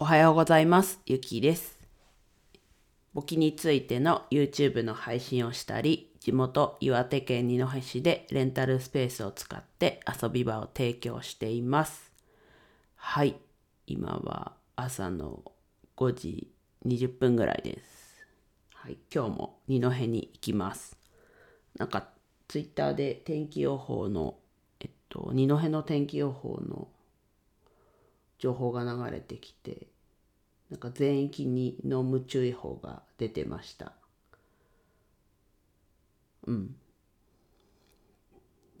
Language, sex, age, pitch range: Japanese, female, 40-59, 110-140 Hz